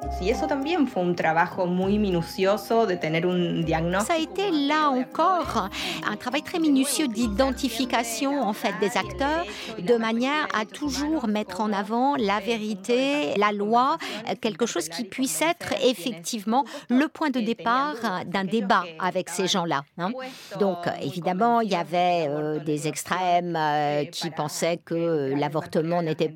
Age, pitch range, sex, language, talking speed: 50-69, 175-250 Hz, female, French, 125 wpm